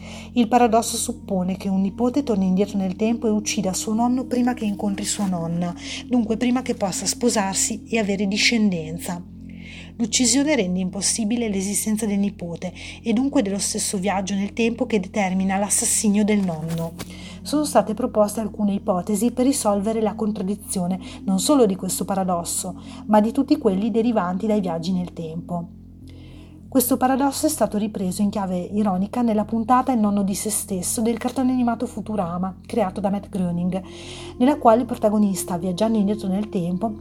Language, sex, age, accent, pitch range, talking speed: Italian, female, 30-49, native, 190-235 Hz, 160 wpm